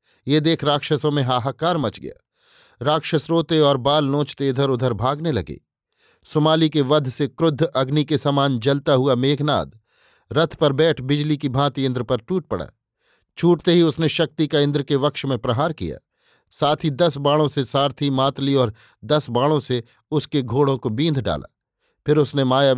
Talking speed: 175 wpm